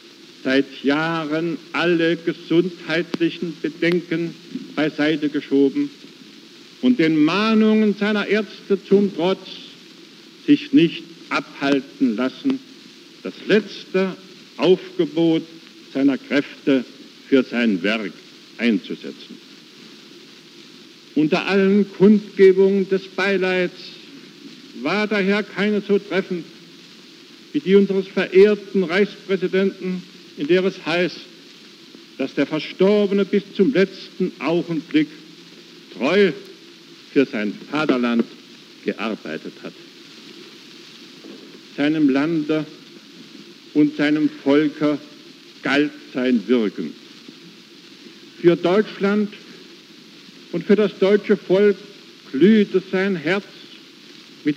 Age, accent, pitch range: 70-89, German, 165-215 Hz